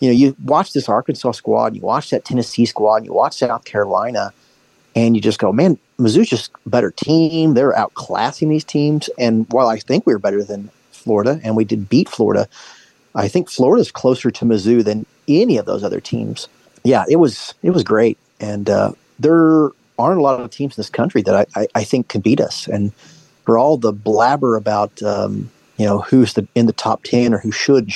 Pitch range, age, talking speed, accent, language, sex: 110-155 Hz, 40-59, 215 wpm, American, English, male